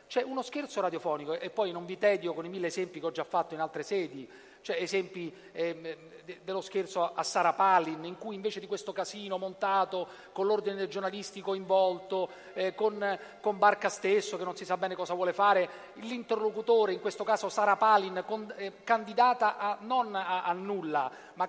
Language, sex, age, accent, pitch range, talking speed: Italian, male, 40-59, native, 180-215 Hz, 175 wpm